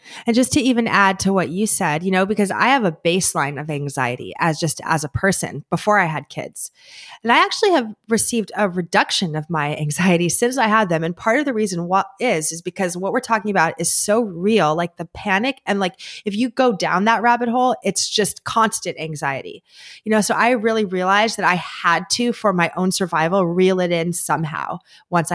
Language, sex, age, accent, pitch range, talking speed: English, female, 20-39, American, 170-210 Hz, 215 wpm